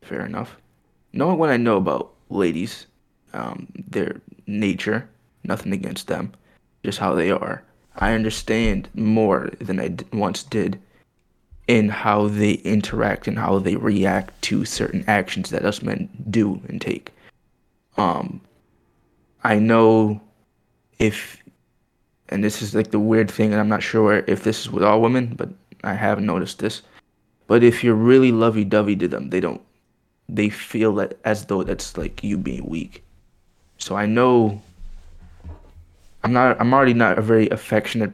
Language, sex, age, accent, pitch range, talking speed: English, male, 20-39, American, 95-110 Hz, 155 wpm